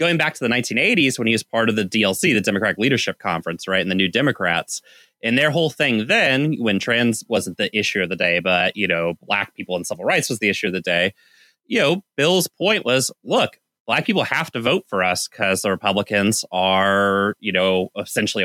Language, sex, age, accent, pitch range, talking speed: English, male, 30-49, American, 100-150 Hz, 220 wpm